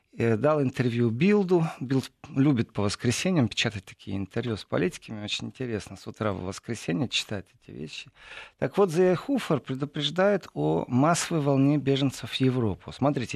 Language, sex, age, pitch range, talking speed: Russian, male, 40-59, 115-150 Hz, 145 wpm